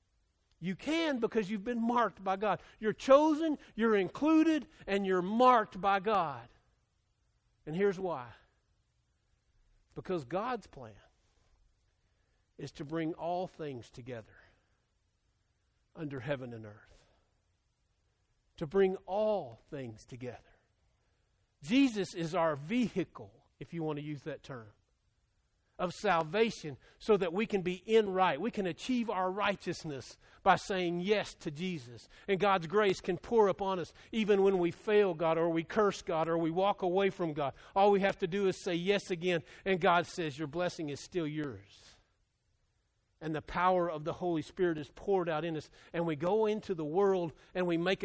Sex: male